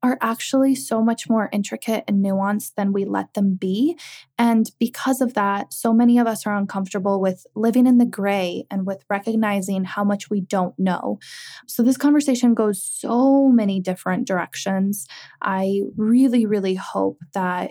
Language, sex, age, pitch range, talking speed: English, female, 20-39, 195-235 Hz, 165 wpm